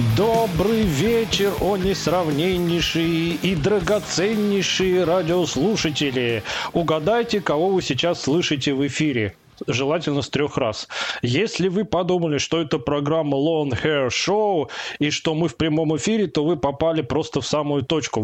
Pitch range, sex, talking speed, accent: 145-180 Hz, male, 130 wpm, native